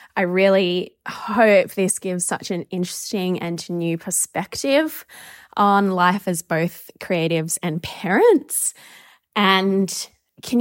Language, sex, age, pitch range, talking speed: English, female, 20-39, 180-230 Hz, 115 wpm